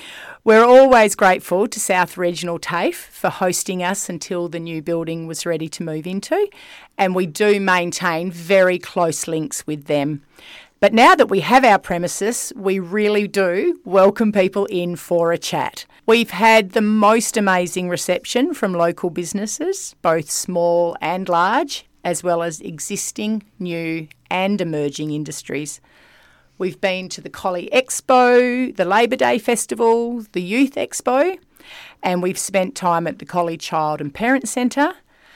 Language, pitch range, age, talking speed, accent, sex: English, 170-210 Hz, 40-59, 150 wpm, Australian, female